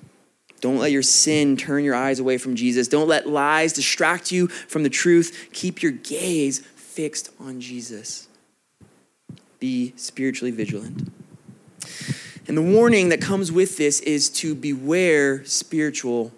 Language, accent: English, American